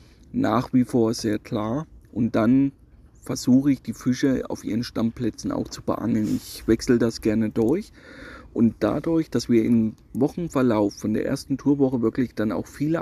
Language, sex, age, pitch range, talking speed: German, male, 30-49, 115-140 Hz, 165 wpm